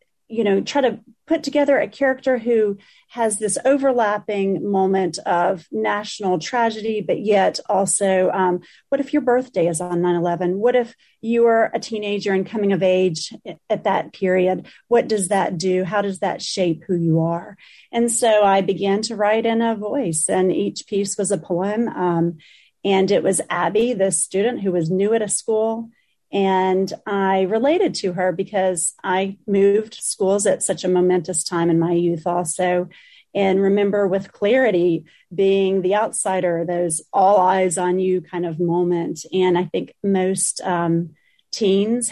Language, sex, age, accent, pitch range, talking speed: English, female, 30-49, American, 180-215 Hz, 170 wpm